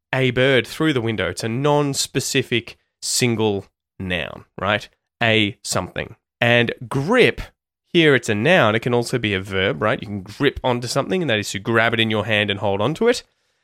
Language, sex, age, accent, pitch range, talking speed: English, male, 20-39, Australian, 105-145 Hz, 195 wpm